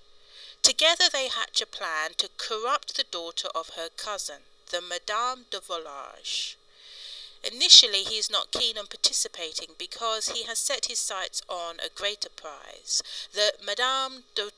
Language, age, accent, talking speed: English, 50-69, British, 150 wpm